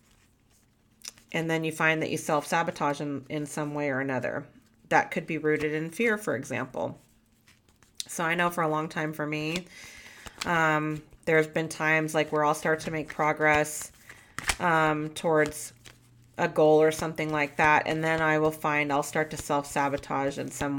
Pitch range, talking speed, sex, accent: 140-155 Hz, 175 wpm, female, American